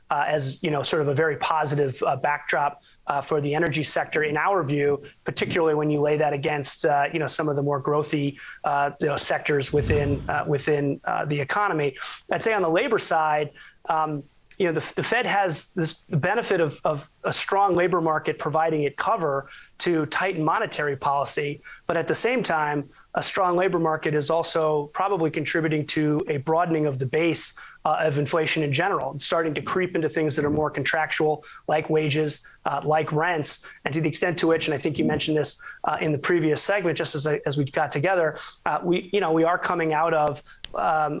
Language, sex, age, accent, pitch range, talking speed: English, male, 30-49, American, 145-170 Hz, 210 wpm